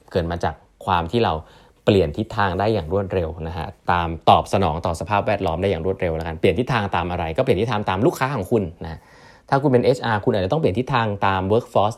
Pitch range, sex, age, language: 90-115 Hz, male, 20-39, Thai